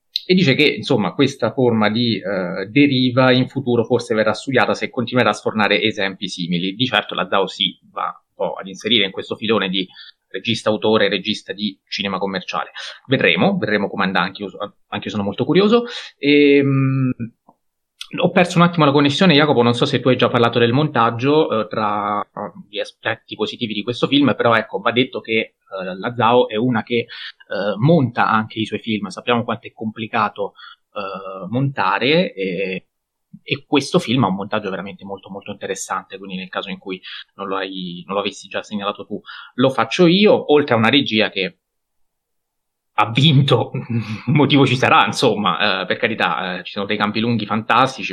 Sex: male